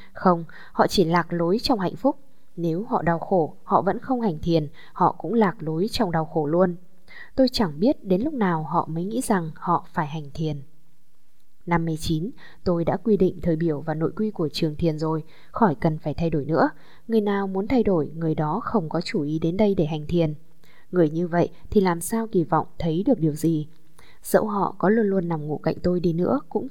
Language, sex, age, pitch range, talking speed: Vietnamese, female, 10-29, 160-205 Hz, 220 wpm